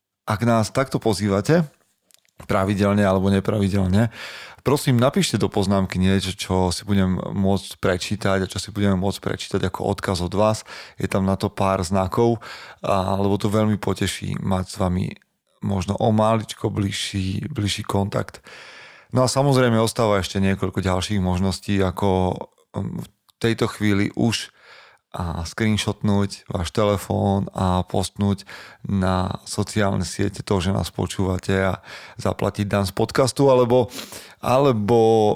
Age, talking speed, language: 30-49, 135 wpm, Slovak